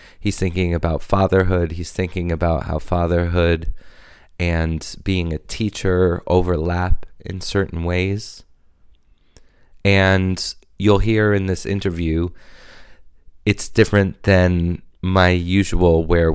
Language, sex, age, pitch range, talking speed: English, male, 20-39, 80-95 Hz, 105 wpm